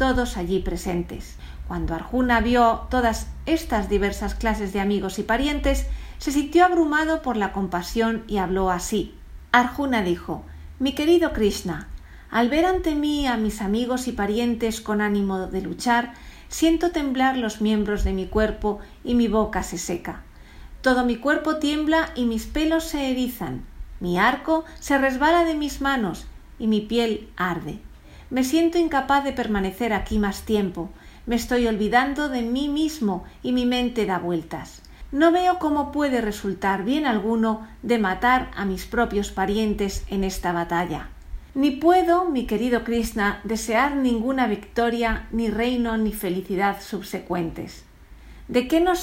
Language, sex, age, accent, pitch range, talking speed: Spanish, female, 40-59, Spanish, 200-265 Hz, 150 wpm